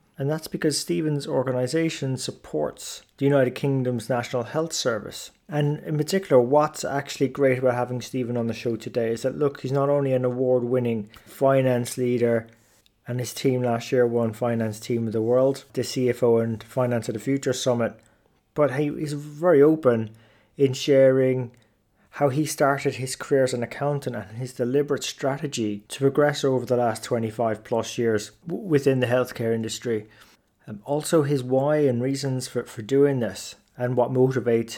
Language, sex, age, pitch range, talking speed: English, male, 20-39, 120-140 Hz, 165 wpm